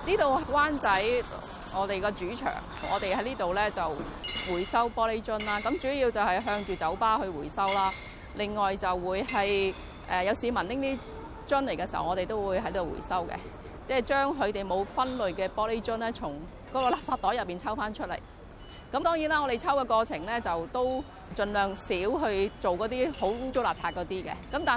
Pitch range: 195-255 Hz